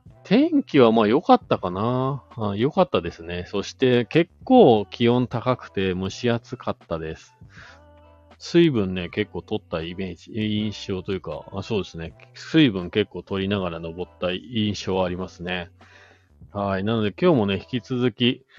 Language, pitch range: Japanese, 95-125 Hz